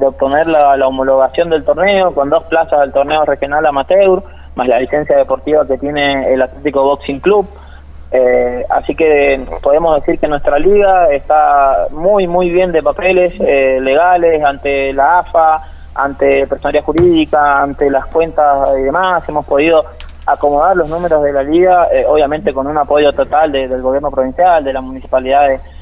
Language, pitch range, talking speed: Spanish, 135-160 Hz, 165 wpm